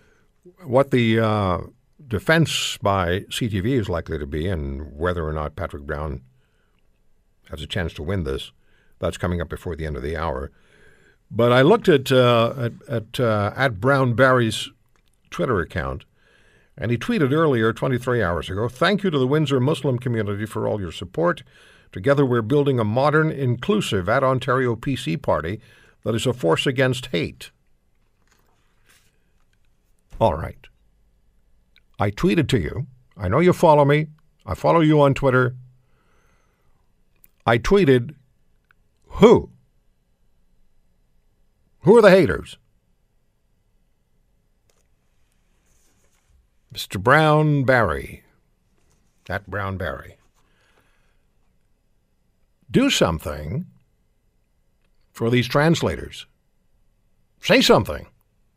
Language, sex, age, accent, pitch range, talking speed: English, male, 60-79, American, 80-135 Hz, 110 wpm